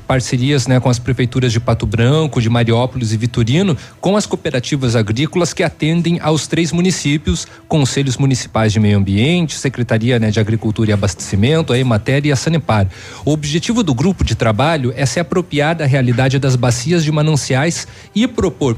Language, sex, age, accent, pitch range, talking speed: Portuguese, male, 40-59, Brazilian, 120-165 Hz, 175 wpm